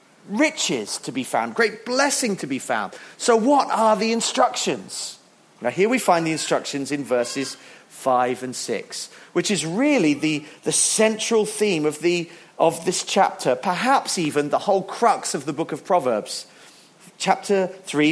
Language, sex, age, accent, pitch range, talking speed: English, male, 40-59, British, 140-210 Hz, 160 wpm